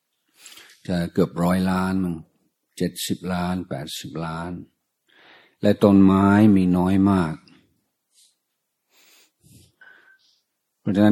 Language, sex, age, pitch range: Thai, male, 60-79, 80-95 Hz